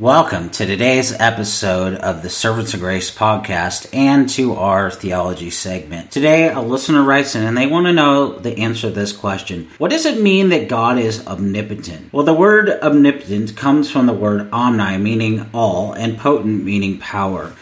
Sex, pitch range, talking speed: male, 115-175 Hz, 180 wpm